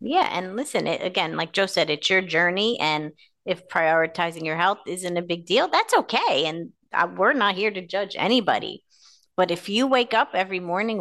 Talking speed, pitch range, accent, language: 190 wpm, 170-225 Hz, American, English